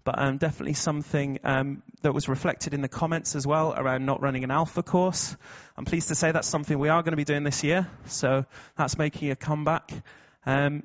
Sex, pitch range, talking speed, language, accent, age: male, 135-165 Hz, 215 wpm, English, British, 30-49